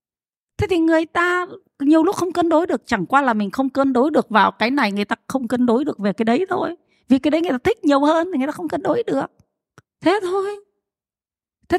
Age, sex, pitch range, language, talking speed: 20-39, female, 190-295 Hz, Vietnamese, 250 wpm